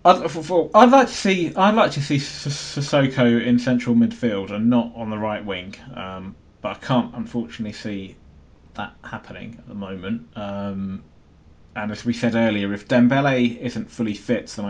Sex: male